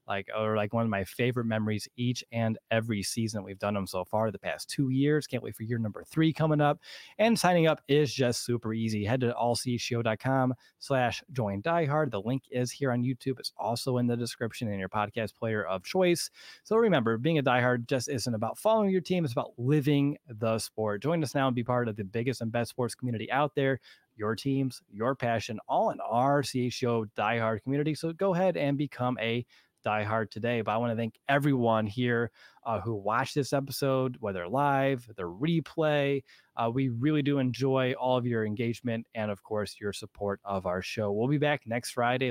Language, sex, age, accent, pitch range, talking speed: English, male, 30-49, American, 110-140 Hz, 210 wpm